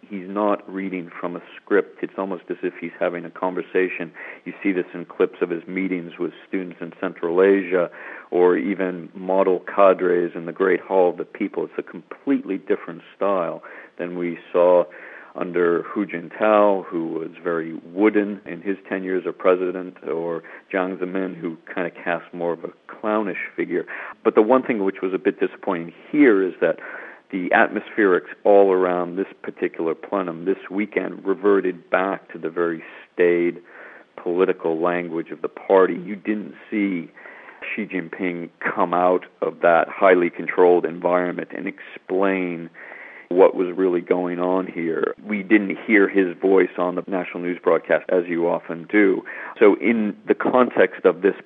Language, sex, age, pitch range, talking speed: English, male, 50-69, 85-100 Hz, 165 wpm